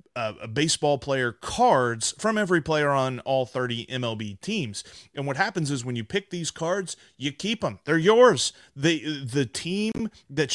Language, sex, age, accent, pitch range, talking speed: English, male, 30-49, American, 120-160 Hz, 175 wpm